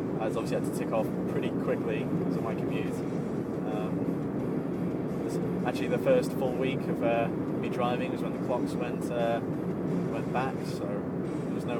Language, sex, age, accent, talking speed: English, male, 20-39, British, 180 wpm